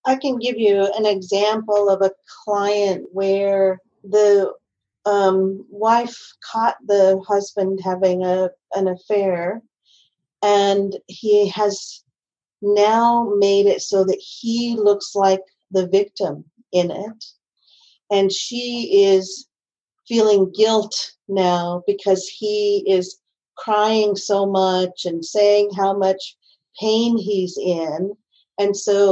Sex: female